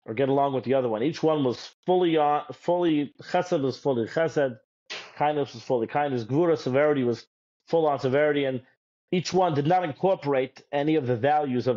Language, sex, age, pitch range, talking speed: English, male, 40-59, 120-150 Hz, 195 wpm